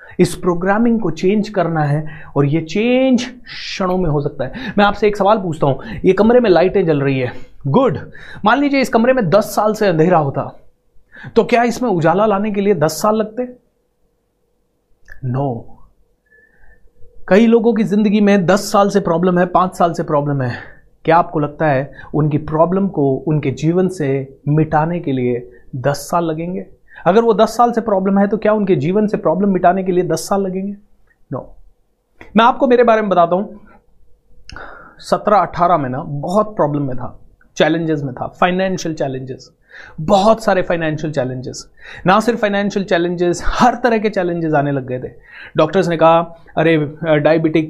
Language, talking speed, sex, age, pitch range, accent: Hindi, 180 wpm, male, 30-49, 150-205 Hz, native